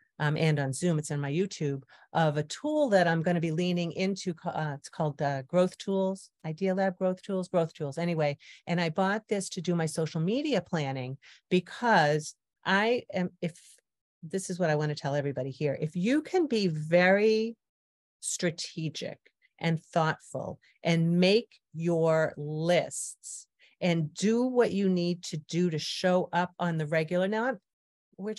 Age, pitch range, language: 40-59, 155-195 Hz, English